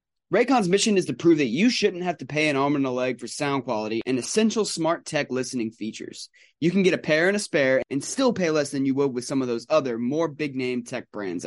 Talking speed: 255 wpm